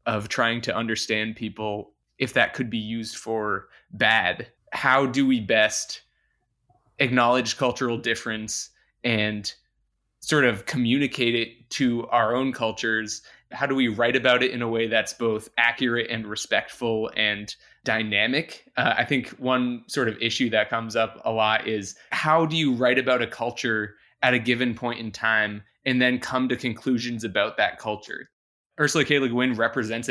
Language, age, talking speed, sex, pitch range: English, 20-39, 165 wpm, male, 110-125 Hz